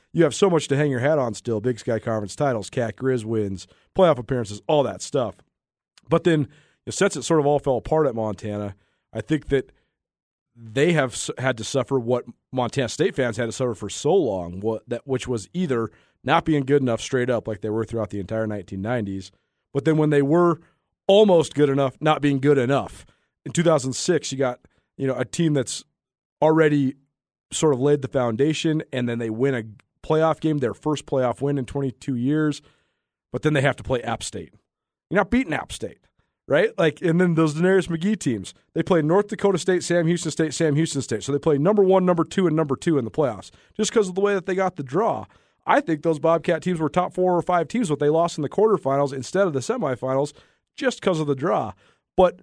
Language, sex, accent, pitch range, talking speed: English, male, American, 125-165 Hz, 220 wpm